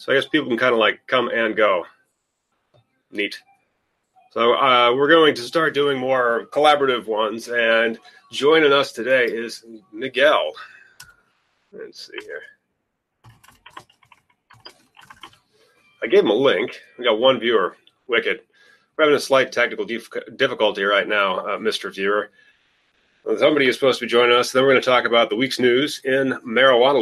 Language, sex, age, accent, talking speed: English, male, 30-49, American, 155 wpm